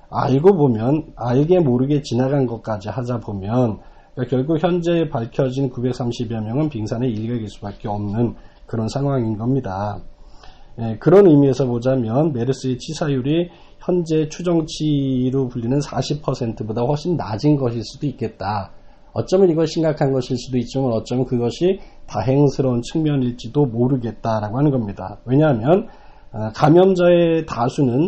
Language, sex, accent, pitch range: Korean, male, native, 115-145 Hz